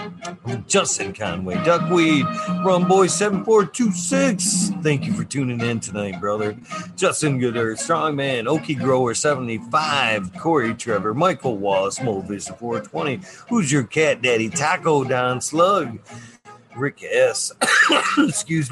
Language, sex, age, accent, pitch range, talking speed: English, male, 50-69, American, 110-170 Hz, 105 wpm